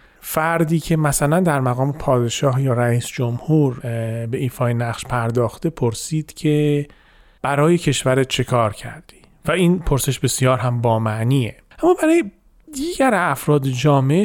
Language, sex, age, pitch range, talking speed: Persian, male, 40-59, 130-175 Hz, 135 wpm